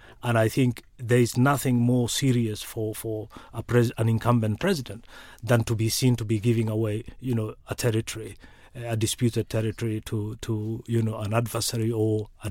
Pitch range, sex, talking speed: 110-125 Hz, male, 180 wpm